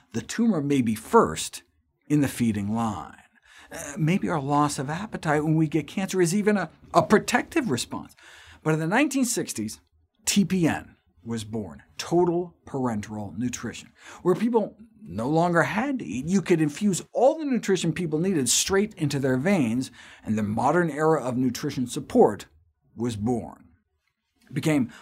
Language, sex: English, male